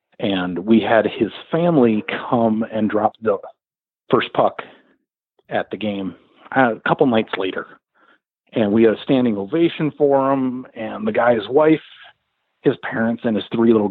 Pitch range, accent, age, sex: 110-135 Hz, American, 40-59, male